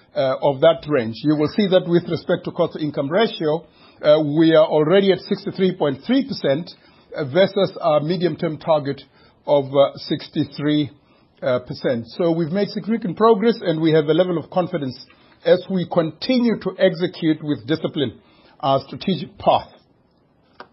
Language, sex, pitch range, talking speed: English, male, 150-190 Hz, 140 wpm